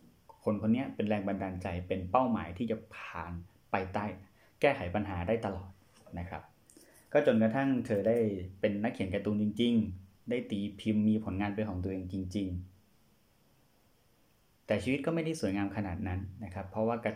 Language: Thai